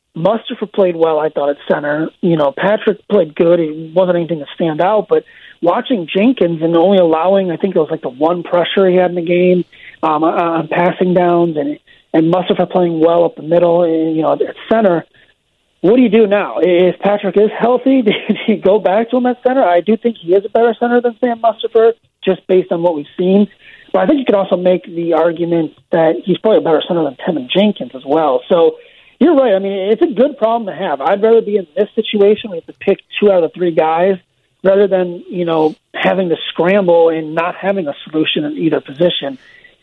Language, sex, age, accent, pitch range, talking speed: English, male, 30-49, American, 170-215 Hz, 225 wpm